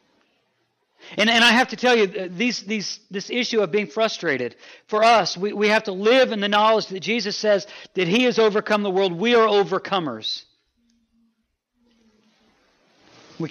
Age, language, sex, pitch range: 40-59, English, male, 155-215 Hz